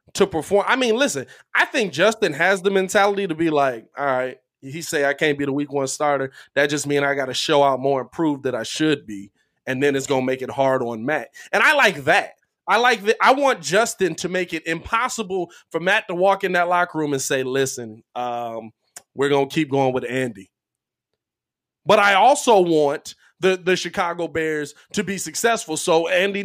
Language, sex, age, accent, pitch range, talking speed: English, male, 20-39, American, 145-200 Hz, 210 wpm